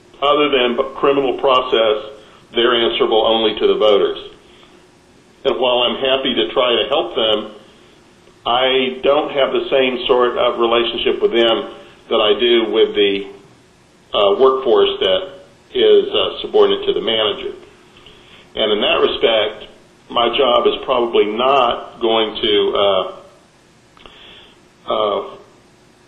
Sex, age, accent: male, 50-69, American